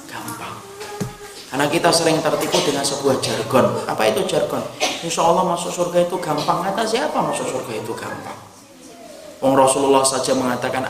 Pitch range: 135-165 Hz